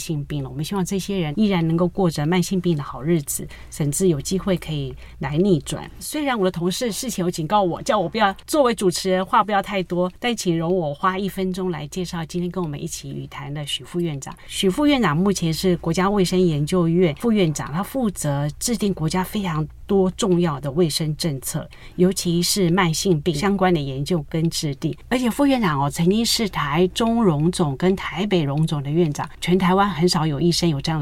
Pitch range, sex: 155-195 Hz, female